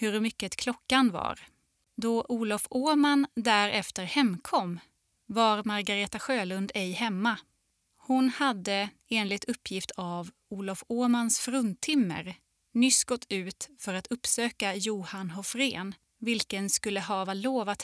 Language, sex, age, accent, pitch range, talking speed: Swedish, female, 20-39, native, 190-240 Hz, 115 wpm